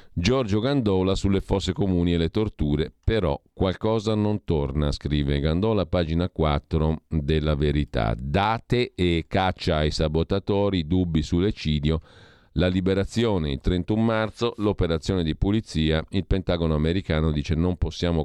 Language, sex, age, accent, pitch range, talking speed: Italian, male, 50-69, native, 75-95 Hz, 130 wpm